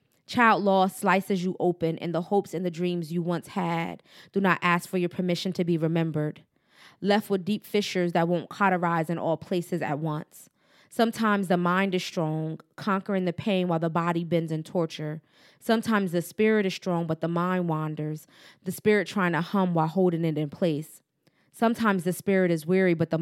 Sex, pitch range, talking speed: female, 165-195 Hz, 195 wpm